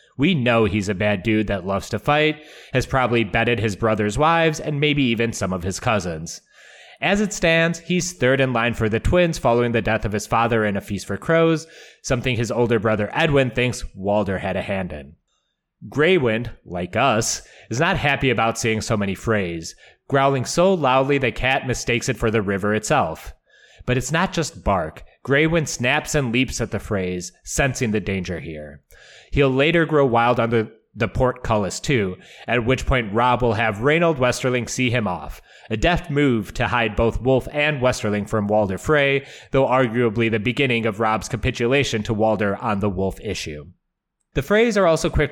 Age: 30-49